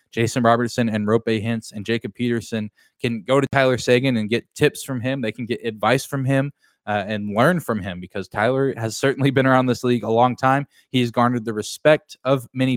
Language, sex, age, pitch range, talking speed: English, male, 20-39, 110-135 Hz, 215 wpm